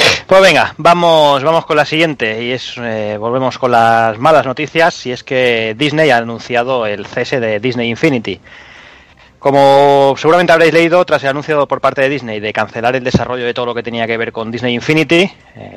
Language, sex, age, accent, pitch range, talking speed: Spanish, male, 20-39, Spanish, 110-145 Hz, 200 wpm